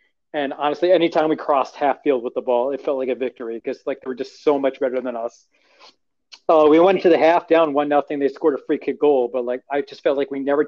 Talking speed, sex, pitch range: 275 wpm, male, 140-155 Hz